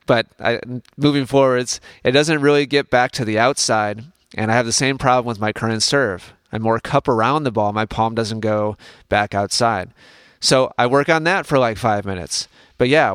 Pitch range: 110-145 Hz